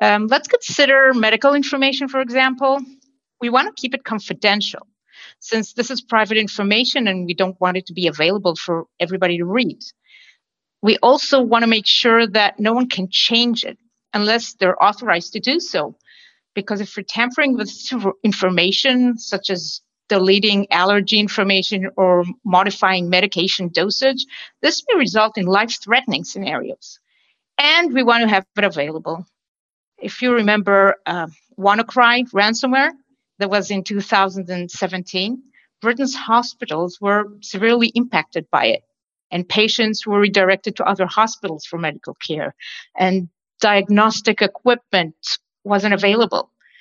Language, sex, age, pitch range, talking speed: English, female, 50-69, 195-250 Hz, 140 wpm